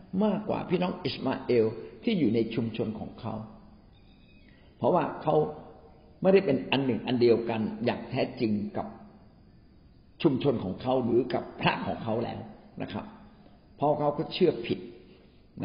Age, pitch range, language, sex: 60-79, 115-160 Hz, Thai, male